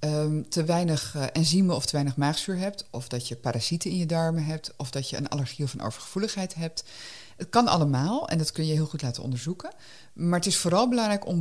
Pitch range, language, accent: 135-180 Hz, Dutch, Dutch